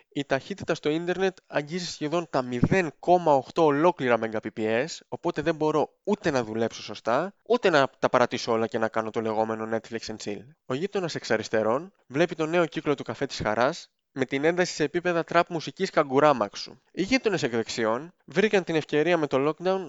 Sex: male